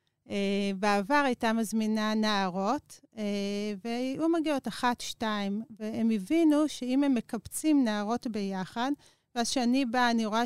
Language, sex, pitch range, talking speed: Hebrew, female, 205-255 Hz, 125 wpm